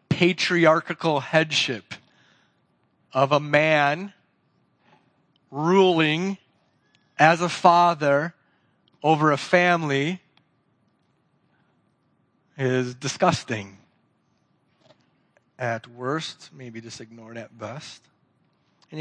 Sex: male